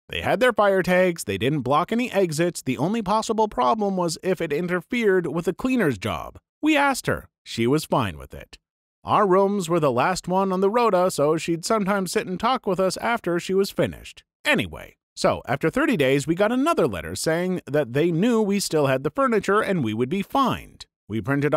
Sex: male